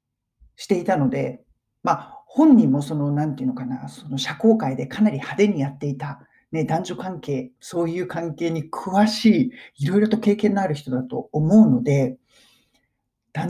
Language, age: Japanese, 40-59